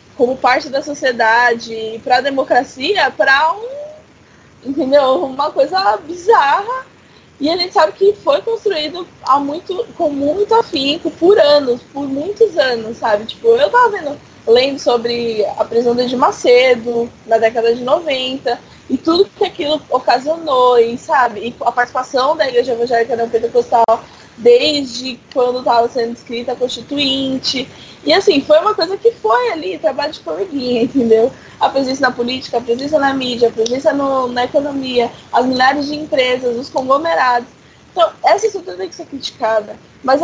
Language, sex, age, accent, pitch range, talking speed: Portuguese, female, 20-39, Brazilian, 245-320 Hz, 150 wpm